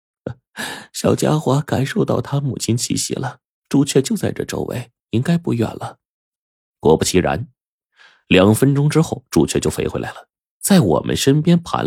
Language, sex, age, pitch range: Chinese, male, 30-49, 85-135 Hz